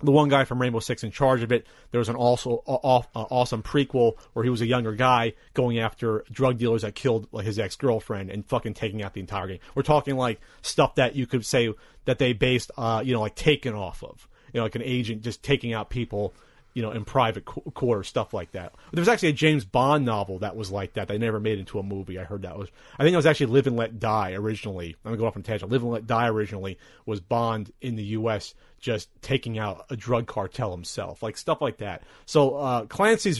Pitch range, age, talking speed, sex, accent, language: 110-145 Hz, 30-49, 255 wpm, male, American, English